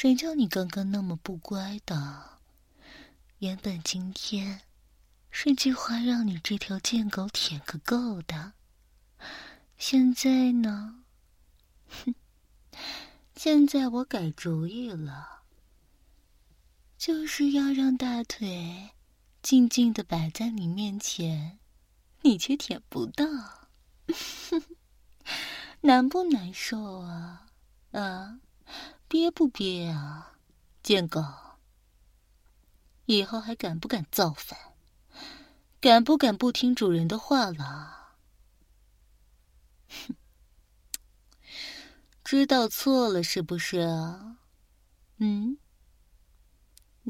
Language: Chinese